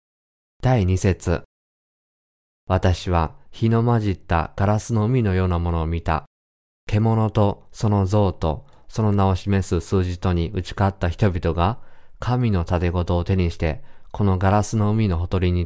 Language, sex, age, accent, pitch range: Japanese, male, 20-39, native, 85-105 Hz